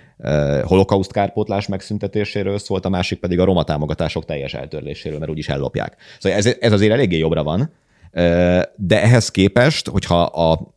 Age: 30-49